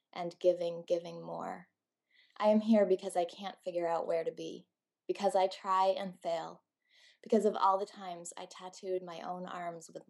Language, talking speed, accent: English, 185 wpm, American